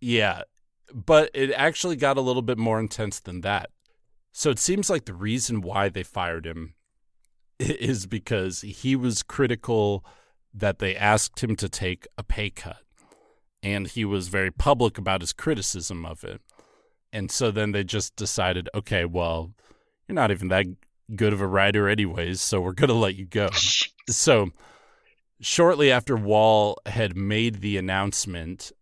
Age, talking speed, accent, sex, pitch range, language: 30-49, 160 wpm, American, male, 95-115 Hz, English